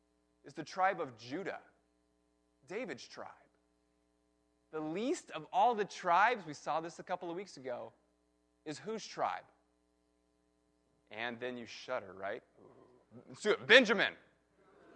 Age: 30-49